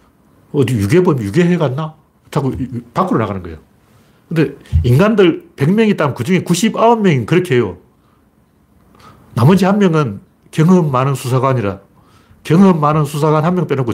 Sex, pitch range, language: male, 105-160 Hz, Korean